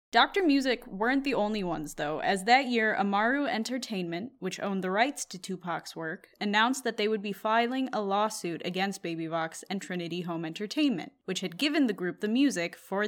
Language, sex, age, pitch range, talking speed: English, female, 10-29, 180-230 Hz, 190 wpm